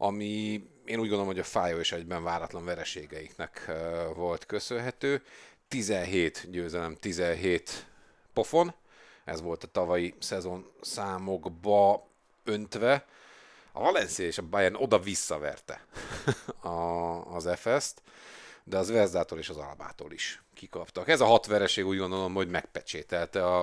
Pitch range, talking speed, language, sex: 90-105 Hz, 125 wpm, Hungarian, male